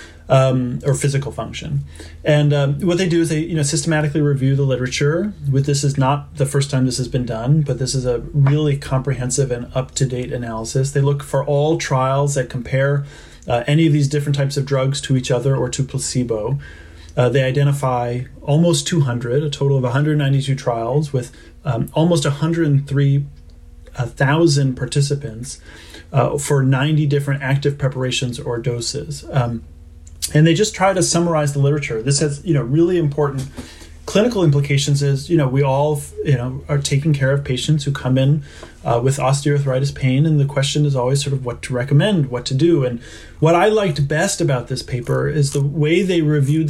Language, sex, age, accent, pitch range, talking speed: English, male, 30-49, American, 125-150 Hz, 185 wpm